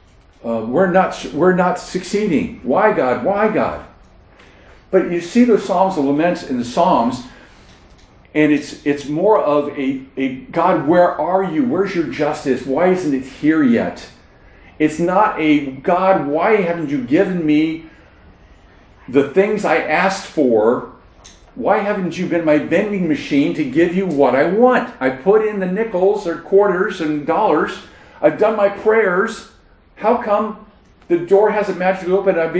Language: English